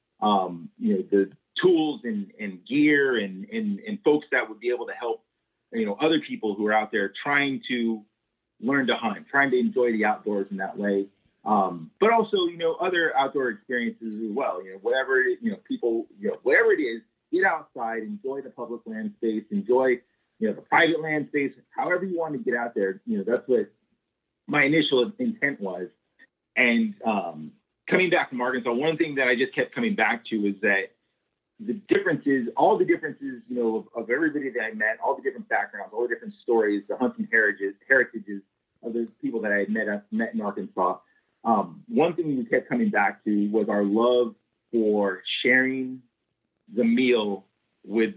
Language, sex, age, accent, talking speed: English, male, 30-49, American, 195 wpm